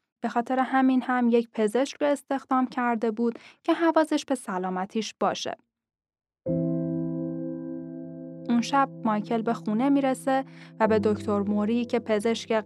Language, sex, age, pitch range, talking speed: Persian, female, 10-29, 205-255 Hz, 130 wpm